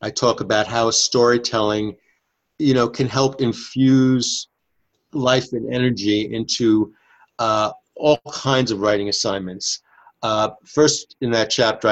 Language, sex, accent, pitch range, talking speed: English, male, American, 100-125 Hz, 125 wpm